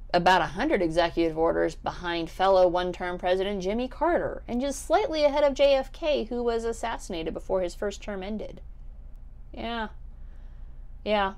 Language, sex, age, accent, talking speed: English, female, 30-49, American, 140 wpm